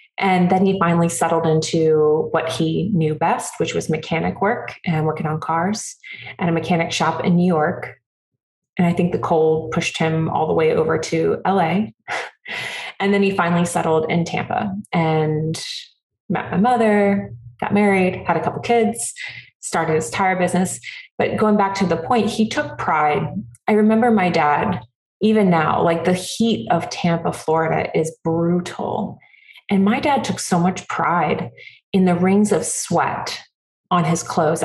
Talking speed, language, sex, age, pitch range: 170 wpm, English, female, 20-39, 160-195 Hz